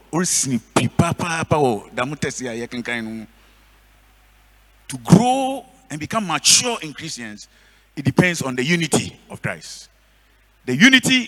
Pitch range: 110-180 Hz